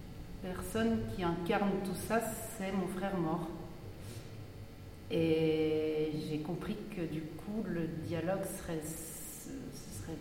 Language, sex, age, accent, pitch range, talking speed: French, female, 30-49, French, 170-220 Hz, 125 wpm